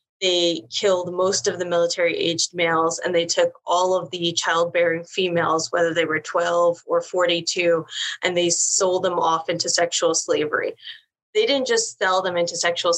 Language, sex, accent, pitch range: English, female, American, 170-200 Hz